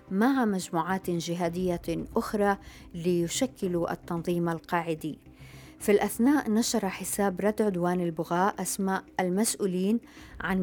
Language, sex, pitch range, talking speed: Arabic, female, 170-200 Hz, 95 wpm